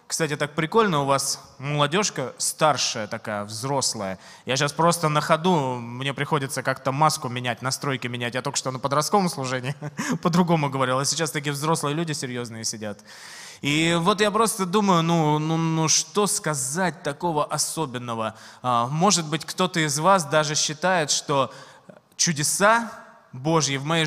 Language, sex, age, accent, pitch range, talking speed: Russian, male, 20-39, native, 140-185 Hz, 145 wpm